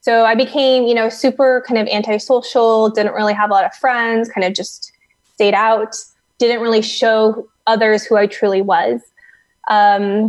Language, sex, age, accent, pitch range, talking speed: English, female, 20-39, American, 205-240 Hz, 175 wpm